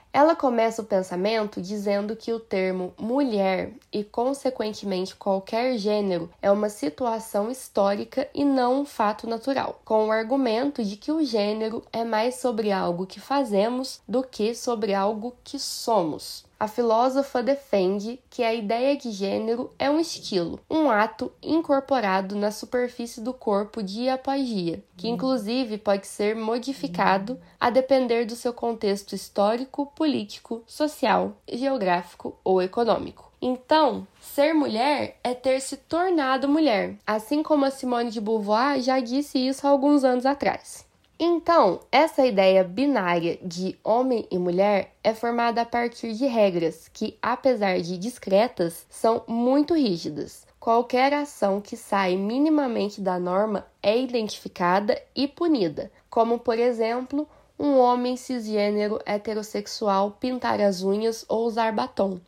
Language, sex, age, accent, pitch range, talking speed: Portuguese, female, 10-29, Brazilian, 205-265 Hz, 140 wpm